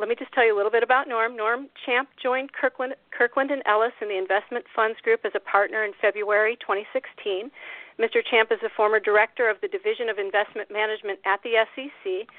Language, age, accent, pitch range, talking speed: English, 40-59, American, 210-260 Hz, 210 wpm